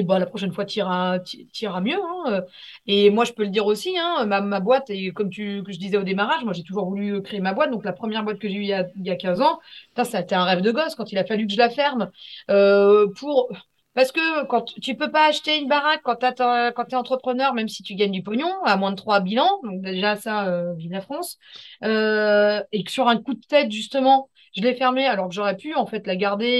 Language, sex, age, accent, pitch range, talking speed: French, female, 30-49, French, 195-255 Hz, 260 wpm